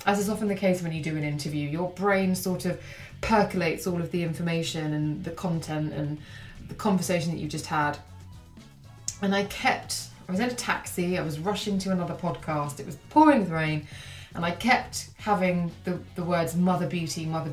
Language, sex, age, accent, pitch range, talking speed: English, female, 20-39, British, 155-195 Hz, 195 wpm